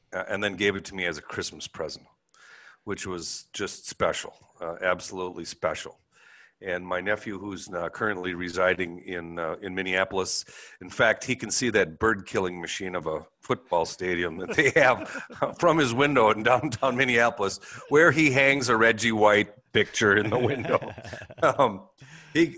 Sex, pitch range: male, 90-120 Hz